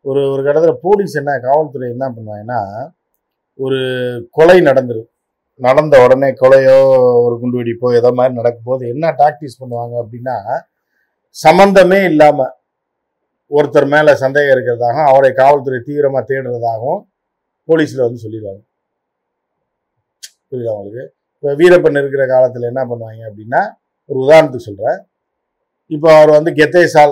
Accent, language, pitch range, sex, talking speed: native, Tamil, 125-160 Hz, male, 115 wpm